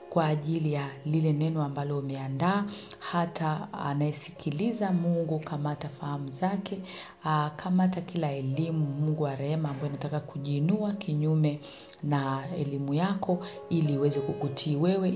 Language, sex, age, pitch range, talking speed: Swahili, female, 40-59, 140-180 Hz, 120 wpm